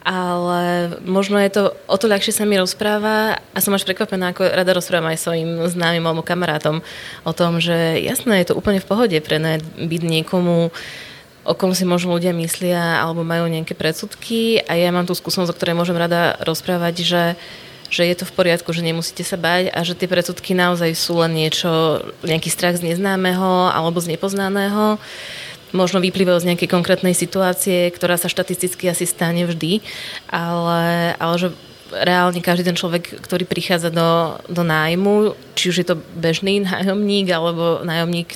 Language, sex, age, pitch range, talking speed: Slovak, female, 20-39, 170-185 Hz, 175 wpm